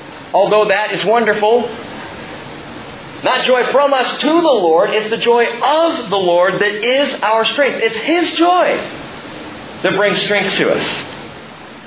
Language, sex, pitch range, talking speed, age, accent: English, male, 155-235 Hz, 145 wpm, 40-59, American